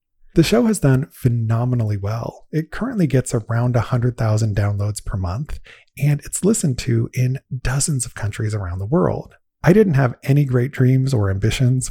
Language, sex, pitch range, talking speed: English, male, 110-145 Hz, 165 wpm